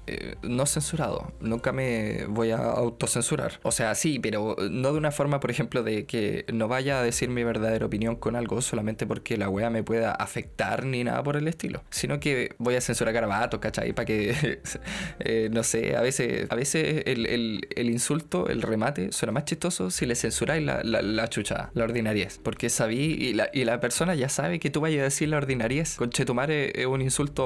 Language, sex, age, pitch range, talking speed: Spanish, male, 20-39, 115-140 Hz, 210 wpm